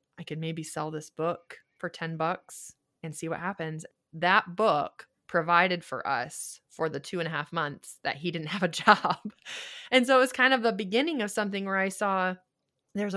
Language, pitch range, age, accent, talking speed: English, 150-185 Hz, 20-39, American, 205 wpm